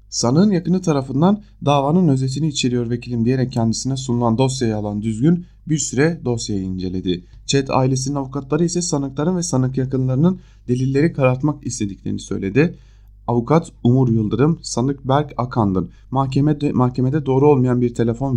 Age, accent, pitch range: 30-49, Turkish, 105-135 Hz